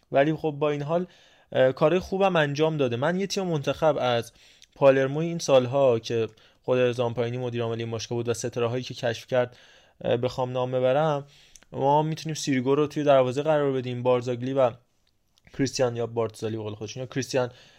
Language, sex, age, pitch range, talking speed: Persian, male, 20-39, 125-145 Hz, 160 wpm